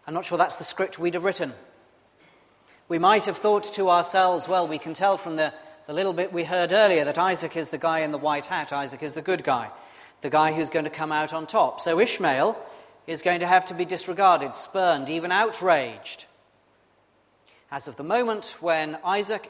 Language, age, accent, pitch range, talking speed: English, 40-59, British, 155-190 Hz, 210 wpm